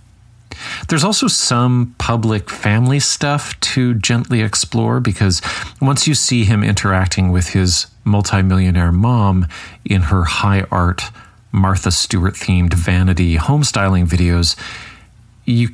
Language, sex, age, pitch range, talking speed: English, male, 40-59, 95-115 Hz, 120 wpm